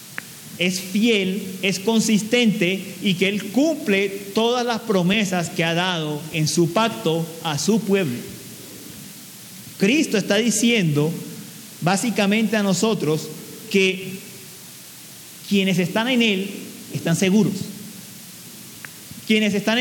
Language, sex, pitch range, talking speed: Spanish, male, 175-225 Hz, 105 wpm